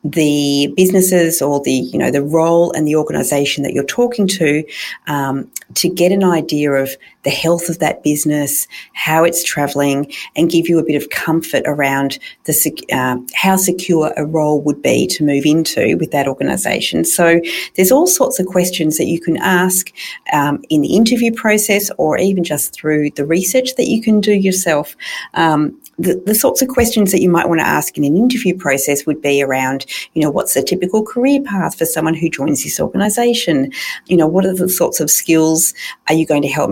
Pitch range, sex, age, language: 150-190 Hz, female, 40-59, English